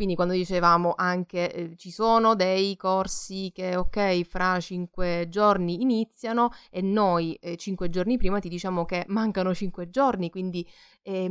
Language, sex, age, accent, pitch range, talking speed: Italian, female, 20-39, native, 170-220 Hz, 155 wpm